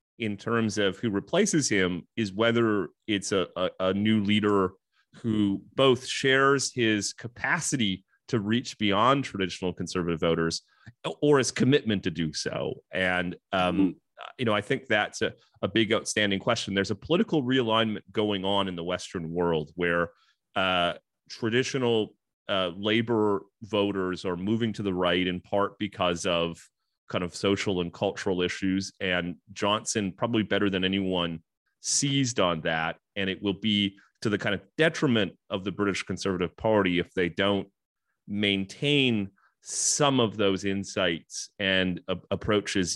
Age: 30-49